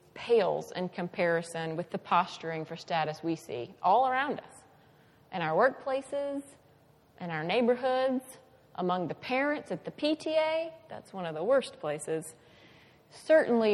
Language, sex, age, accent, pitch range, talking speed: English, female, 30-49, American, 165-250 Hz, 140 wpm